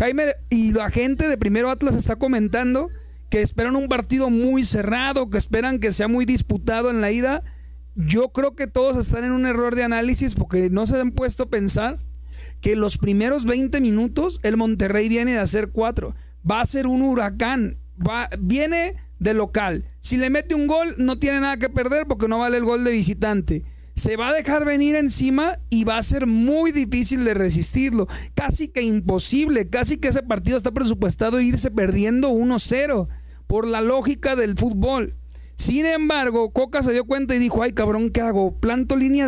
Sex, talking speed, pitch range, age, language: male, 190 wpm, 210-265 Hz, 40-59, Spanish